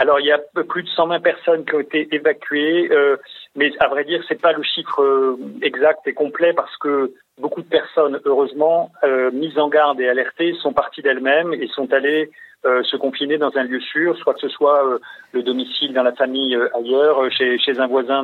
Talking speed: 215 wpm